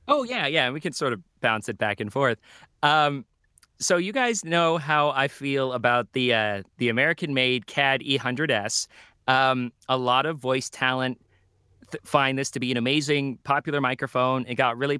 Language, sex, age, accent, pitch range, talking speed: English, male, 30-49, American, 125-150 Hz, 190 wpm